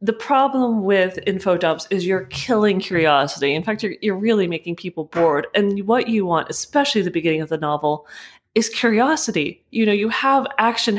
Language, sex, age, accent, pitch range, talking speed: English, female, 30-49, American, 175-260 Hz, 185 wpm